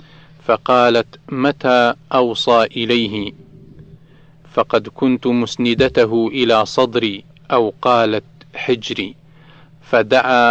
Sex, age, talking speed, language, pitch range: male, 40-59, 75 wpm, Arabic, 115-155 Hz